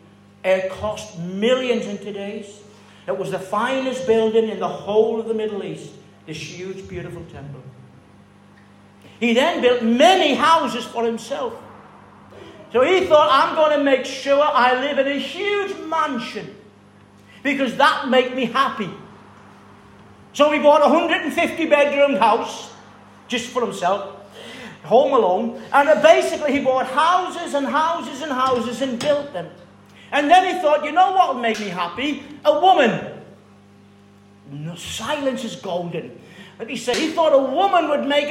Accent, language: British, English